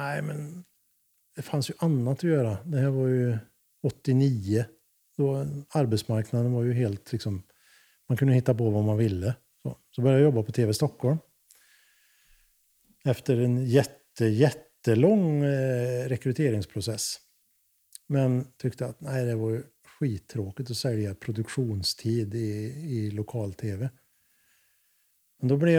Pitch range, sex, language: 115-150 Hz, male, Swedish